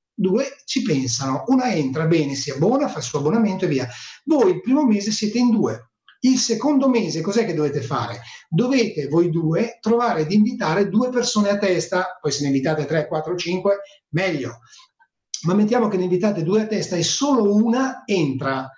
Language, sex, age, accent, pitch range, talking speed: Italian, male, 30-49, native, 155-230 Hz, 185 wpm